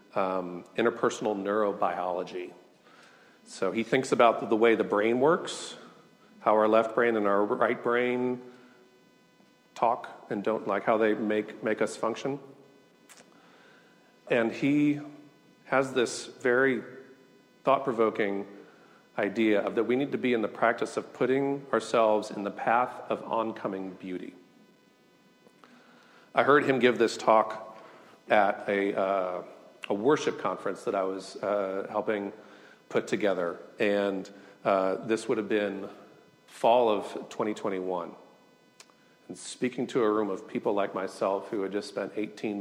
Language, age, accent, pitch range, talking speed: English, 40-59, American, 100-120 Hz, 140 wpm